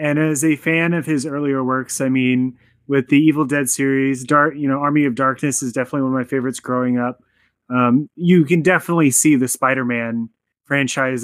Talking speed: 200 wpm